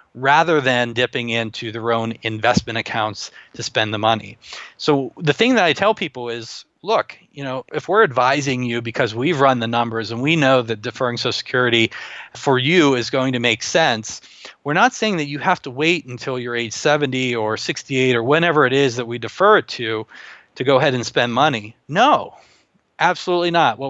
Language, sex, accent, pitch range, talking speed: English, male, American, 115-145 Hz, 200 wpm